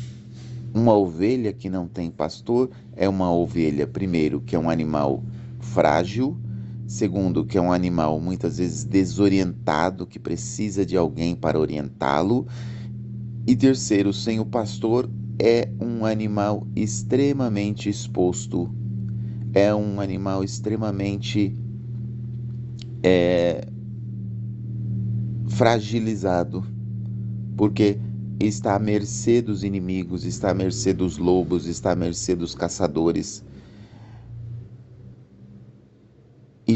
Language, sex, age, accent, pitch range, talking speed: Portuguese, male, 30-49, Brazilian, 95-115 Hz, 100 wpm